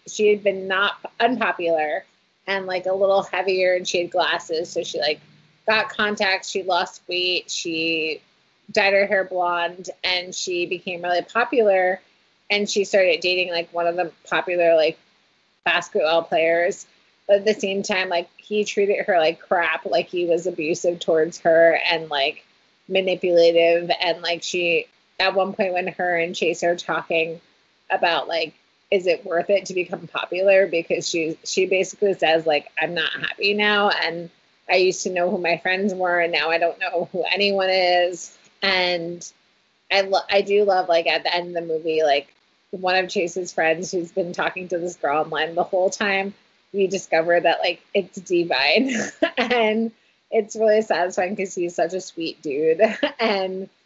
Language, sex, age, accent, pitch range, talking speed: English, female, 30-49, American, 170-195 Hz, 175 wpm